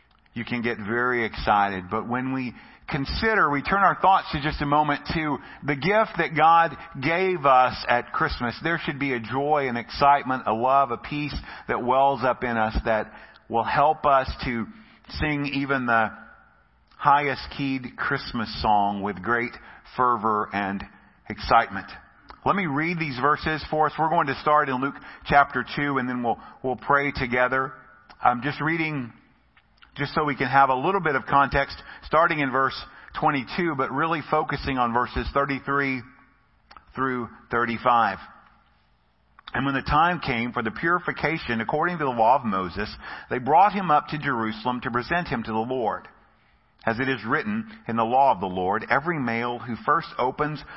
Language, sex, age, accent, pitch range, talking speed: English, male, 50-69, American, 120-150 Hz, 175 wpm